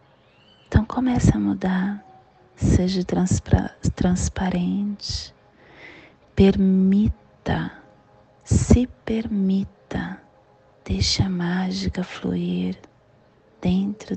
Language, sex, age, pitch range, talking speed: Portuguese, female, 30-49, 130-210 Hz, 60 wpm